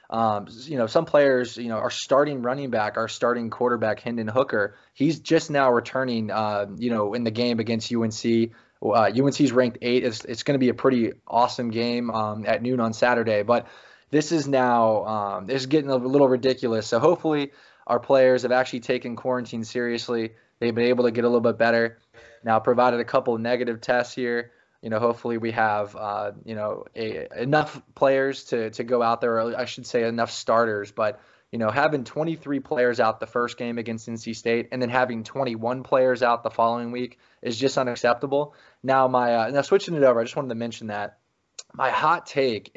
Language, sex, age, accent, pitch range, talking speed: English, male, 20-39, American, 115-130 Hz, 205 wpm